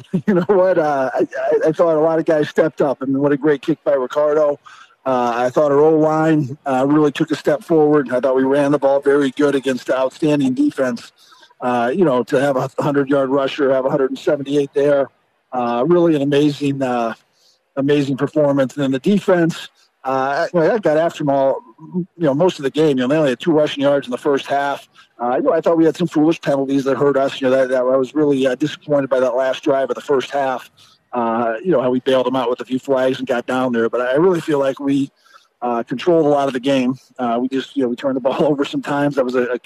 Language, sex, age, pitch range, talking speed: English, male, 50-69, 130-150 Hz, 255 wpm